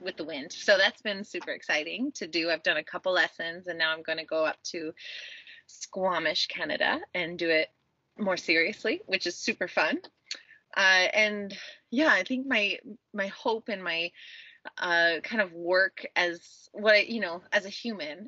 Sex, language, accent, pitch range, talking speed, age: female, English, American, 175-255 Hz, 180 wpm, 20-39